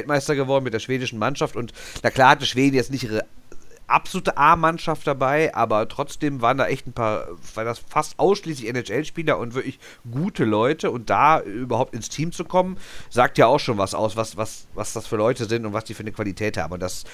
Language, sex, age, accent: German, male, 40-59, German